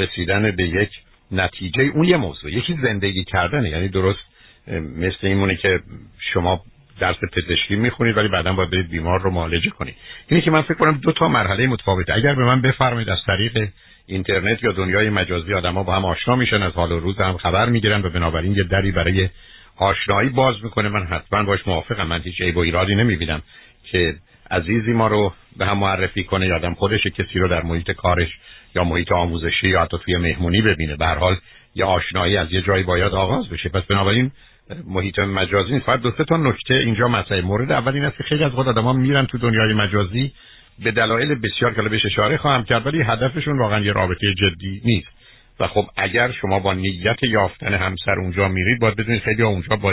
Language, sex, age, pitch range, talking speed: Persian, male, 60-79, 90-115 Hz, 190 wpm